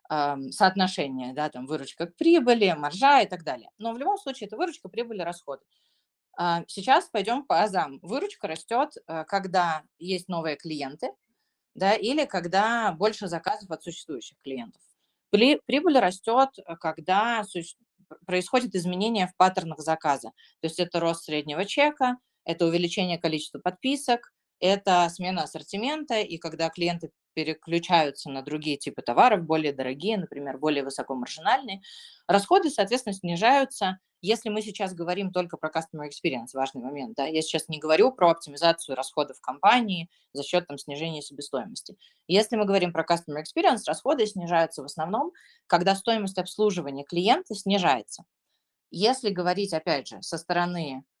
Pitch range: 155-210 Hz